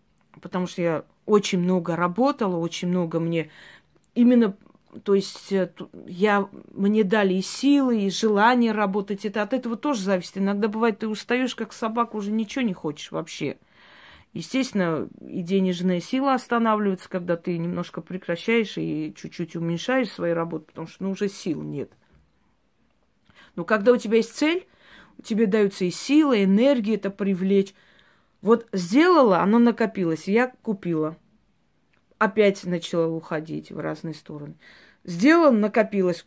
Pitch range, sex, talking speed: 180-235 Hz, female, 140 wpm